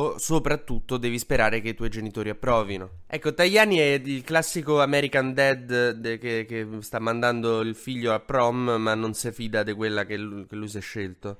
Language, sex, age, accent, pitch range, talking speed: Italian, male, 20-39, native, 115-150 Hz, 195 wpm